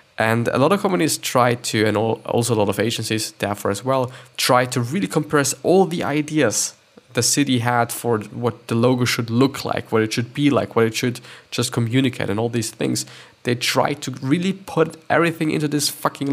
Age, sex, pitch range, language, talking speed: 20-39, male, 115-145 Hz, English, 205 wpm